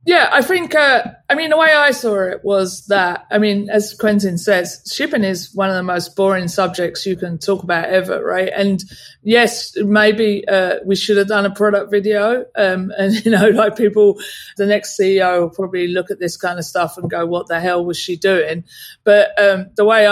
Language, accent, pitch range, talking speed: English, British, 190-220 Hz, 215 wpm